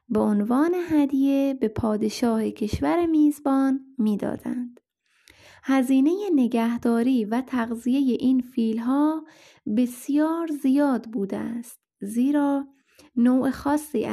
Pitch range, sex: 225-275 Hz, female